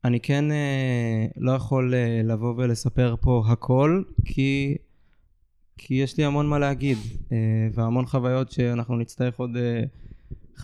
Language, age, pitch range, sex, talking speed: Hebrew, 20-39, 115-130 Hz, male, 135 wpm